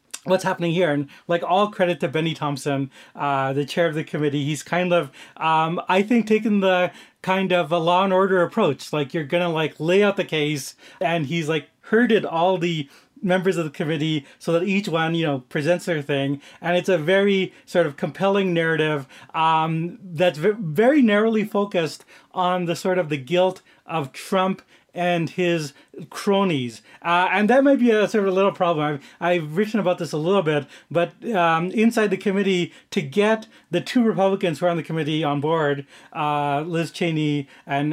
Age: 30-49